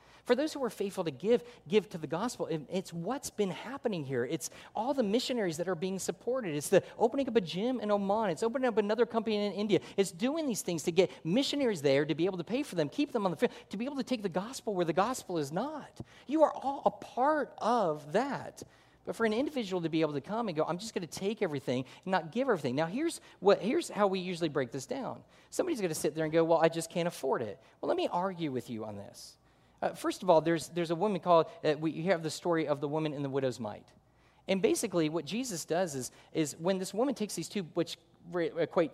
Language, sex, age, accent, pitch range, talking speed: English, male, 40-59, American, 155-235 Hz, 255 wpm